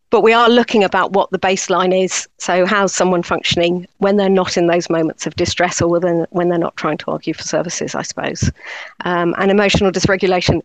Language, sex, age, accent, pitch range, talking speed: English, female, 40-59, British, 175-200 Hz, 205 wpm